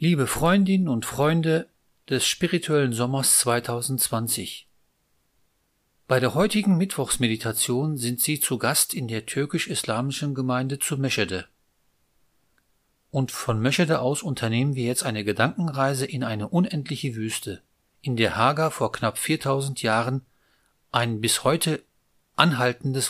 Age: 40-59